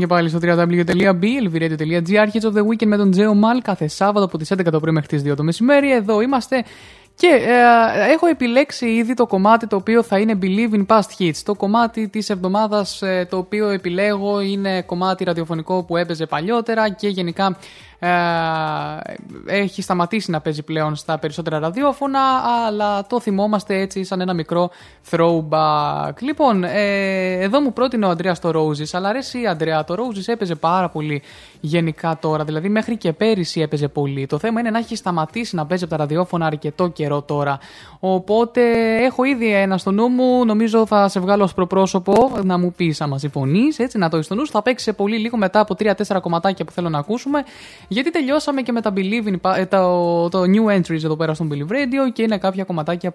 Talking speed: 185 wpm